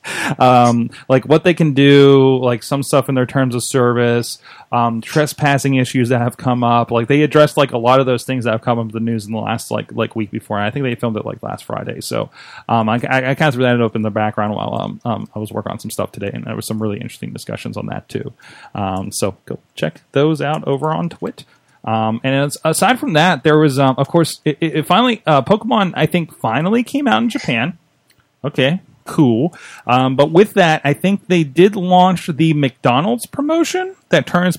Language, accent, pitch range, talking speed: English, American, 120-150 Hz, 230 wpm